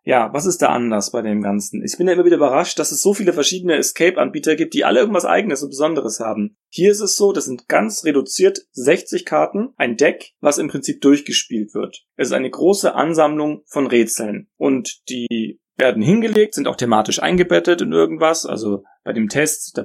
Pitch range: 120-165 Hz